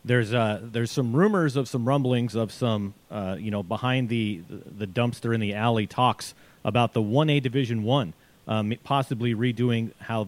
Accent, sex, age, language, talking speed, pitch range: American, male, 40-59, English, 175 wpm, 115-145 Hz